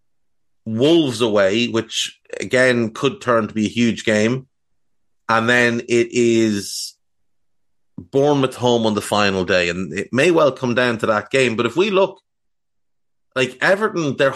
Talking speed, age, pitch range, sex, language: 155 wpm, 30-49, 105-140 Hz, male, English